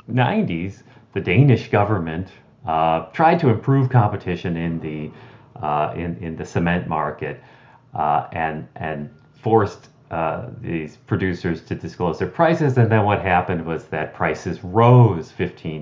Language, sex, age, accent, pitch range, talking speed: English, male, 40-59, American, 85-125 Hz, 140 wpm